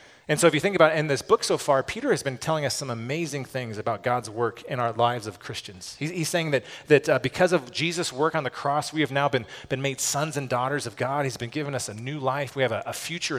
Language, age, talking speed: English, 30-49, 285 wpm